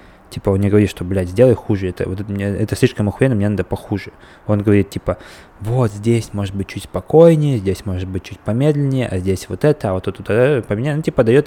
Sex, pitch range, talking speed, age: male, 95-120 Hz, 225 wpm, 20-39